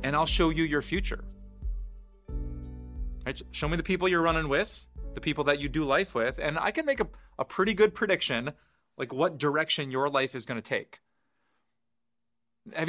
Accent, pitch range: American, 125-170 Hz